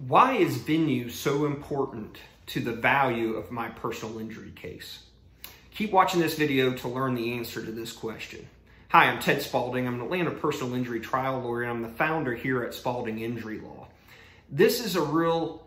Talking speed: 180 wpm